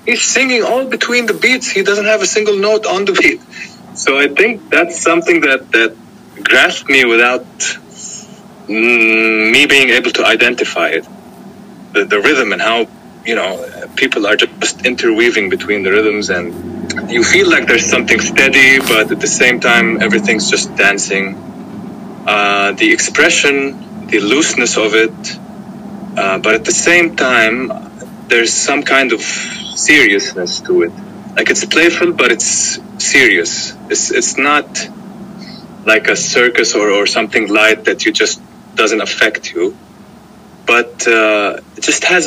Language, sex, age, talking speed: English, male, 20-39, 150 wpm